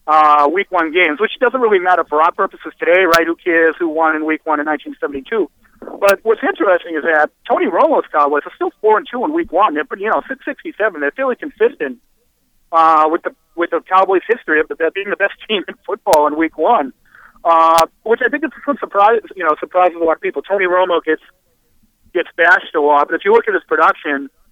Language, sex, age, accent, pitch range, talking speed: English, male, 40-59, American, 150-205 Hz, 235 wpm